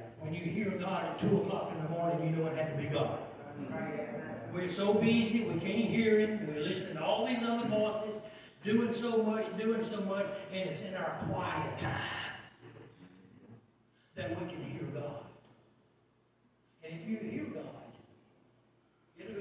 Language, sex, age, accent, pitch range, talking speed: English, male, 60-79, American, 130-200 Hz, 165 wpm